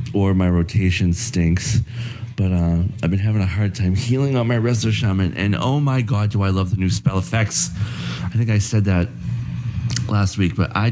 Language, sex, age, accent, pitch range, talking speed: English, male, 30-49, American, 100-120 Hz, 205 wpm